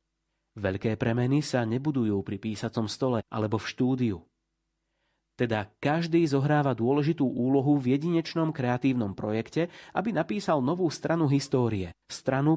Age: 30-49